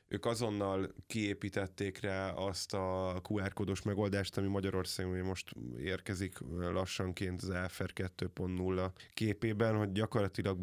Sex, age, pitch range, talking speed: male, 20-39, 95-110 Hz, 120 wpm